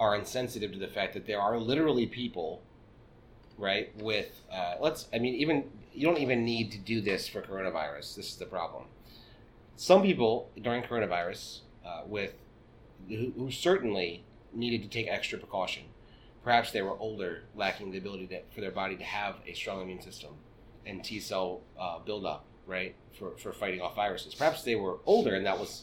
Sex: male